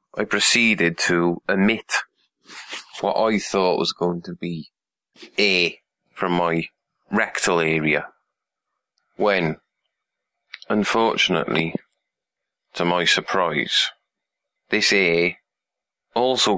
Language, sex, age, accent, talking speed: English, male, 30-49, British, 85 wpm